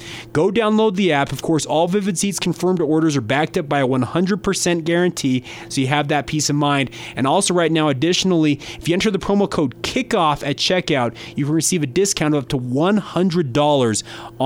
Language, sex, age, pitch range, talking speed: English, male, 30-49, 145-180 Hz, 200 wpm